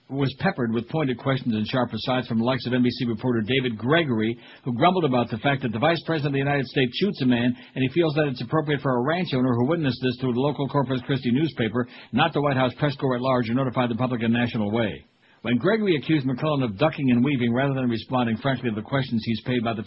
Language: English